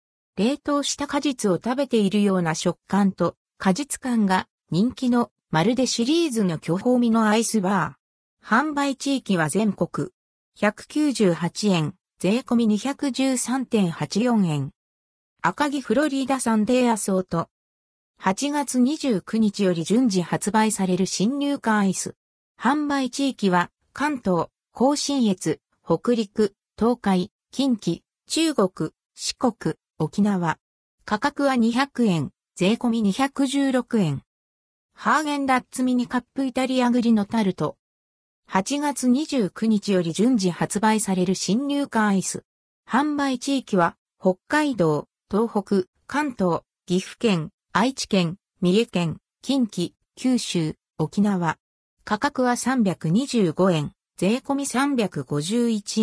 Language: Japanese